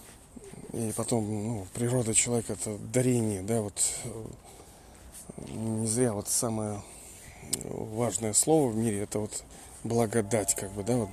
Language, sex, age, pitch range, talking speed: Russian, male, 20-39, 100-125 Hz, 130 wpm